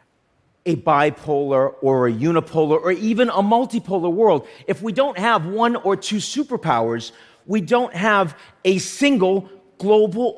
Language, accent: English, American